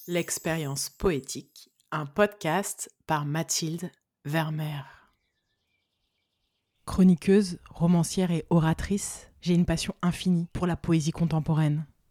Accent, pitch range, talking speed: French, 150-175 Hz, 95 wpm